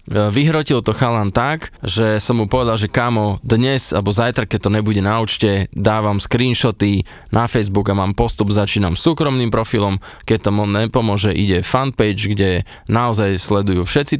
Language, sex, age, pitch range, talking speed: Slovak, male, 20-39, 100-120 Hz, 160 wpm